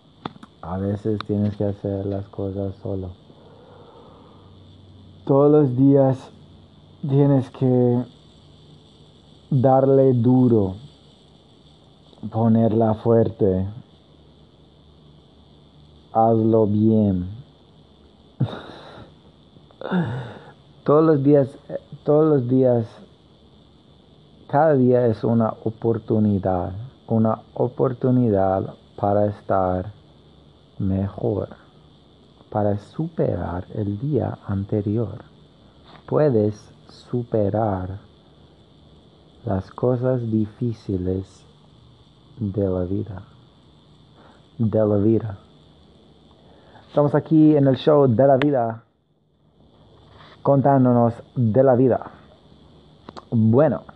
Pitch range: 90-125 Hz